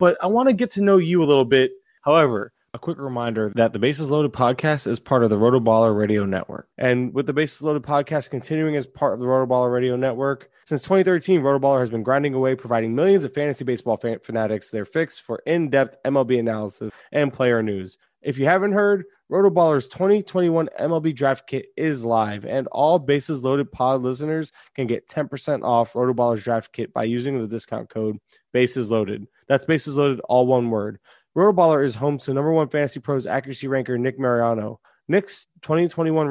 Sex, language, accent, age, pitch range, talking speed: male, English, American, 20-39, 120-150 Hz, 200 wpm